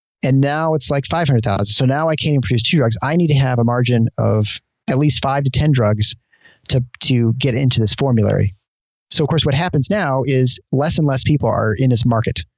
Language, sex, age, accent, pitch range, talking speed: English, male, 30-49, American, 115-150 Hz, 225 wpm